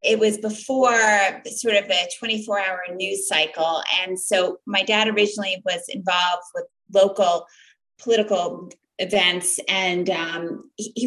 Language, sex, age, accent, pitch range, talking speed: English, female, 30-49, American, 190-230 Hz, 130 wpm